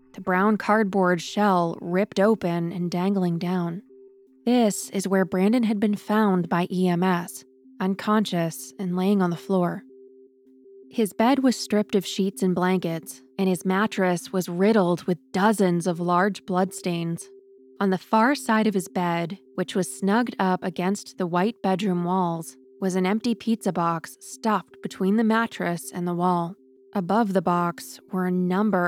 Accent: American